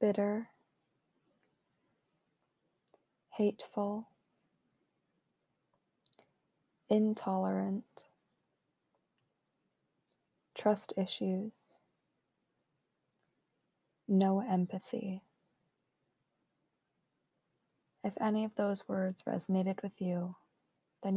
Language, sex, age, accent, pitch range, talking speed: English, female, 20-39, American, 185-205 Hz, 45 wpm